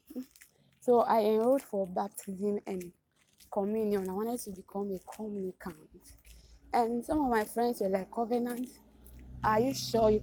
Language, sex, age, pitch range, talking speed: English, female, 20-39, 195-235 Hz, 145 wpm